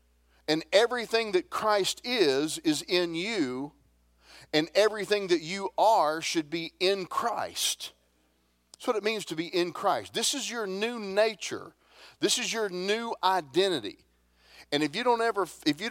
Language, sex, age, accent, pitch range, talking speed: English, male, 40-59, American, 145-230 Hz, 160 wpm